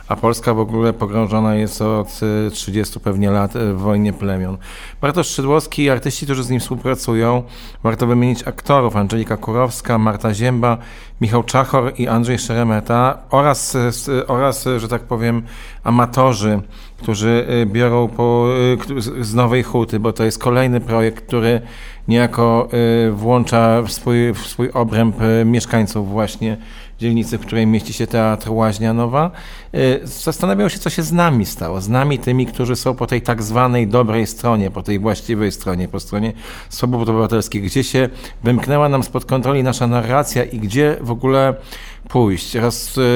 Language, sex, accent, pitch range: Polish, male, native, 115-130 Hz